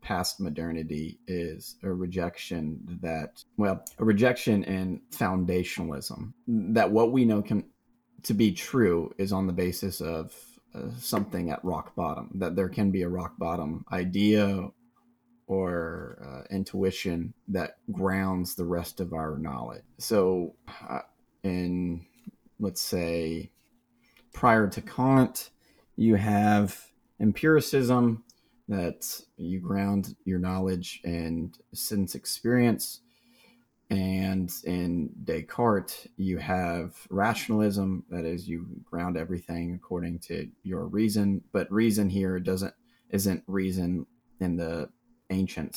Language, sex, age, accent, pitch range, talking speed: English, male, 30-49, American, 85-105 Hz, 115 wpm